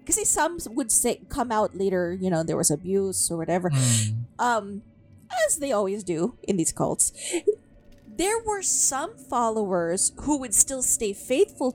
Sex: female